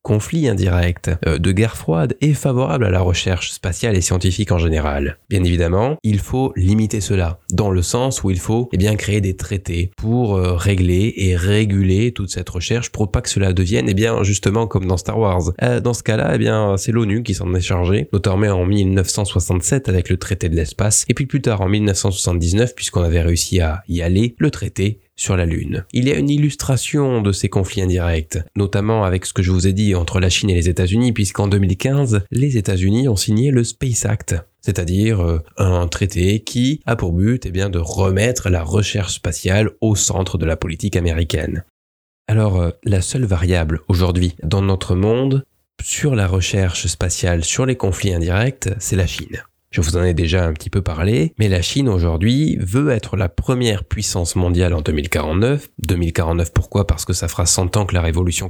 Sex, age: male, 20-39